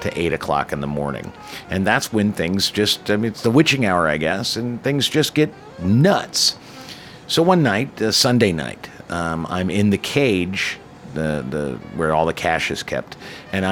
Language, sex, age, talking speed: English, male, 50-69, 190 wpm